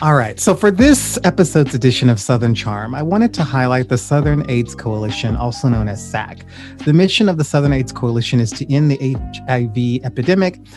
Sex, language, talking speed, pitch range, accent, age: male, English, 195 wpm, 120-145 Hz, American, 30-49